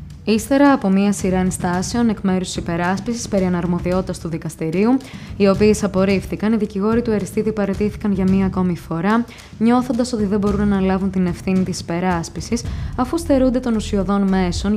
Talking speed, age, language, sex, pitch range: 160 wpm, 20-39, Greek, female, 180-220 Hz